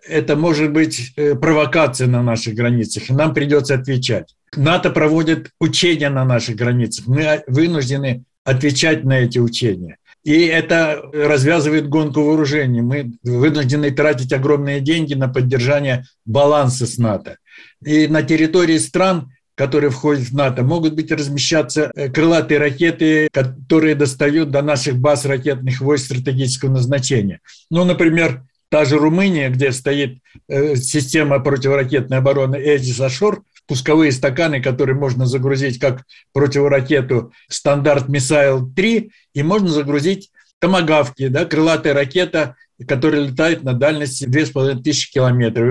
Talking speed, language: 125 wpm, Russian